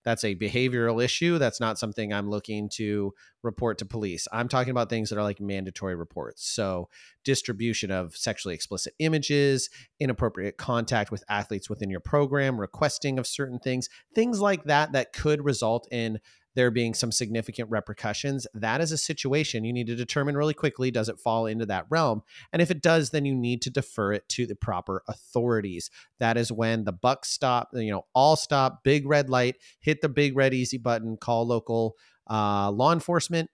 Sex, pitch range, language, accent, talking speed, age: male, 110-135 Hz, English, American, 190 wpm, 30-49